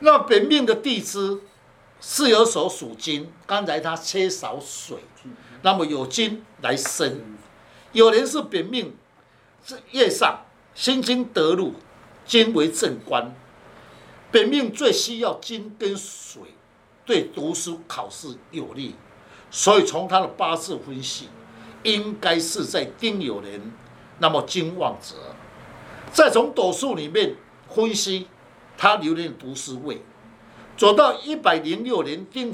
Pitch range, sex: 165-255 Hz, male